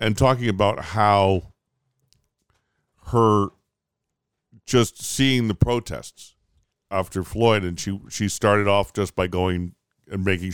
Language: English